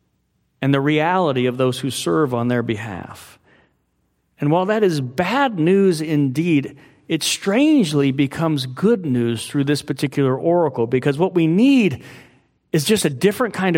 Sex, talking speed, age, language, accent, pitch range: male, 150 wpm, 40-59, English, American, 140-195 Hz